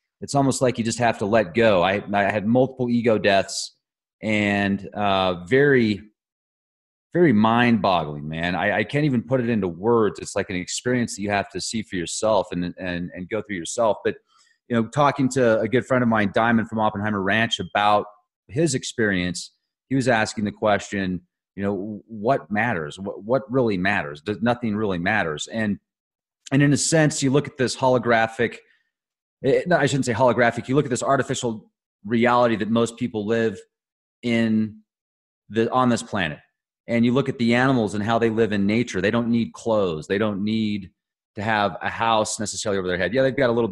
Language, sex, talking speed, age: English, male, 195 wpm, 30-49